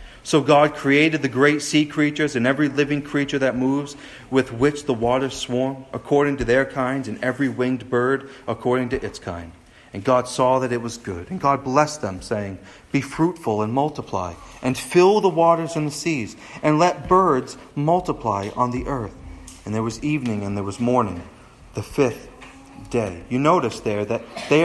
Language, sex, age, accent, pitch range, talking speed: English, male, 40-59, American, 115-155 Hz, 185 wpm